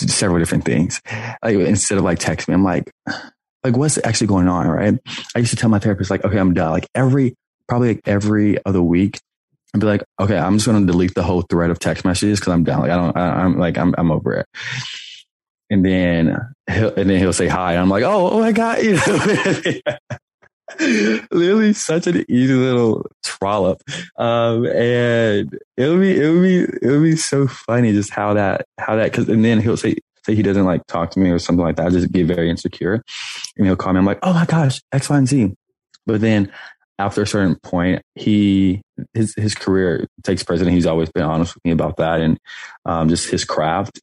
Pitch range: 85-115 Hz